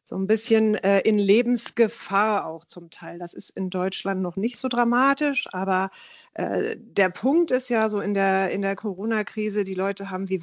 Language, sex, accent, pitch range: German, female, German, 190-225 Hz